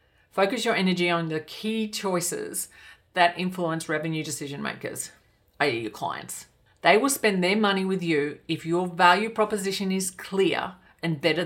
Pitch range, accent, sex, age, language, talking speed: 160-190 Hz, Australian, female, 40-59, English, 155 wpm